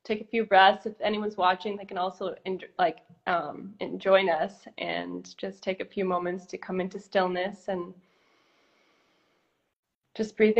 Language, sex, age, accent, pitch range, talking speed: English, female, 20-39, American, 185-215 Hz, 155 wpm